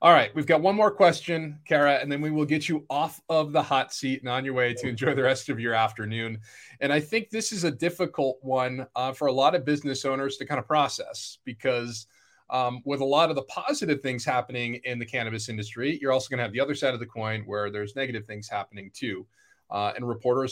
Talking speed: 240 wpm